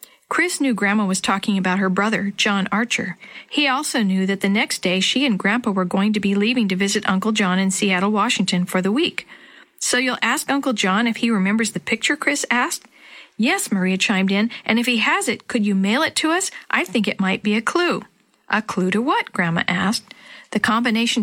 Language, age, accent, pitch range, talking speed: English, 40-59, American, 195-250 Hz, 220 wpm